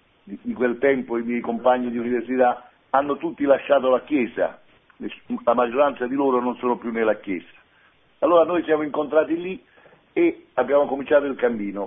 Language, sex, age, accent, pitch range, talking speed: Italian, male, 60-79, native, 125-155 Hz, 160 wpm